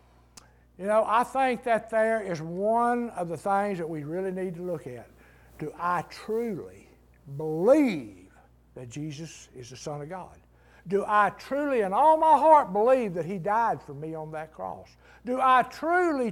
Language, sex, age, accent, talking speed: English, male, 60-79, American, 175 wpm